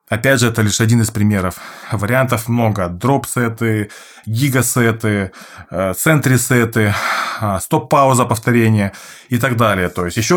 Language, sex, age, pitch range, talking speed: Russian, male, 20-39, 110-140 Hz, 135 wpm